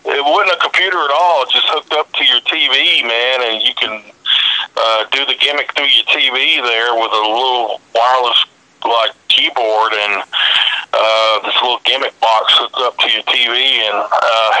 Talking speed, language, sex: 195 wpm, English, male